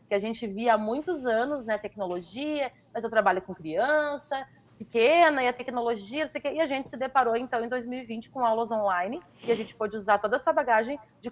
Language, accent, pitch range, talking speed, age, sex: Portuguese, Brazilian, 210-265 Hz, 205 wpm, 30-49, female